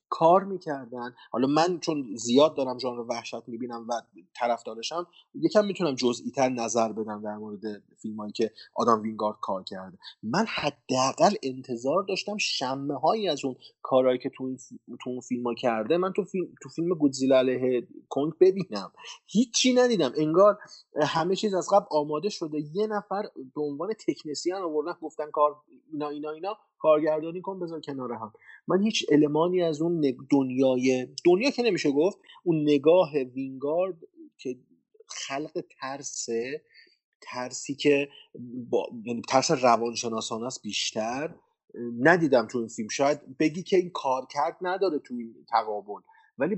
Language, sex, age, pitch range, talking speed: Persian, male, 30-49, 120-175 Hz, 140 wpm